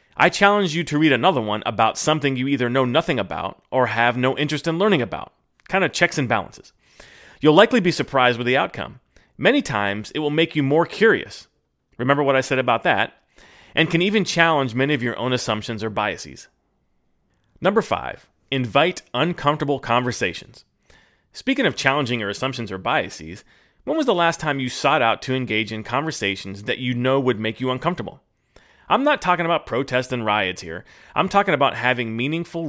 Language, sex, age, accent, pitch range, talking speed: English, male, 30-49, American, 115-155 Hz, 185 wpm